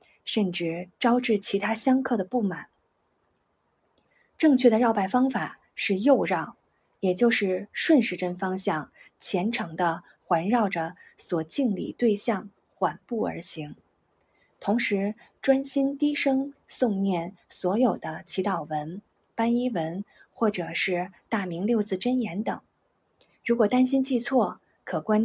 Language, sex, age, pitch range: Chinese, female, 20-39, 180-245 Hz